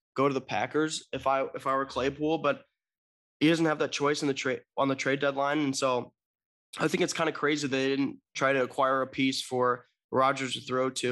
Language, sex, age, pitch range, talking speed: English, male, 20-39, 125-145 Hz, 235 wpm